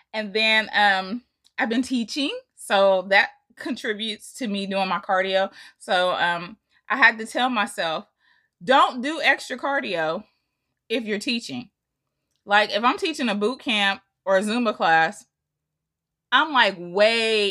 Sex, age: female, 20-39